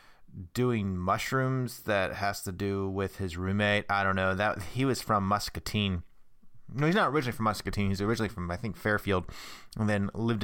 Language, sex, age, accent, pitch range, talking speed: English, male, 30-49, American, 95-125 Hz, 185 wpm